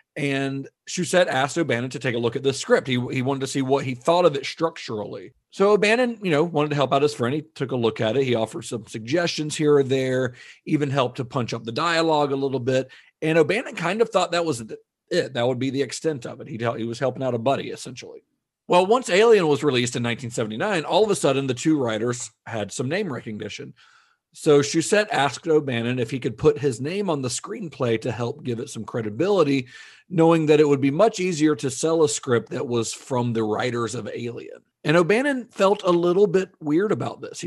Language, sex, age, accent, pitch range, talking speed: English, male, 40-59, American, 120-165 Hz, 225 wpm